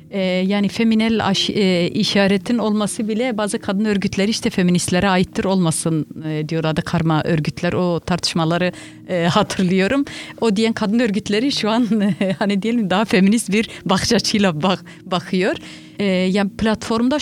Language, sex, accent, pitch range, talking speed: Turkish, female, native, 185-220 Hz, 150 wpm